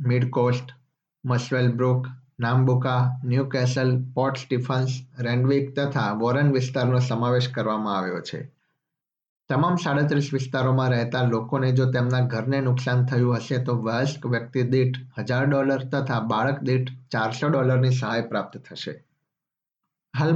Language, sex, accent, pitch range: Gujarati, male, native, 125-135 Hz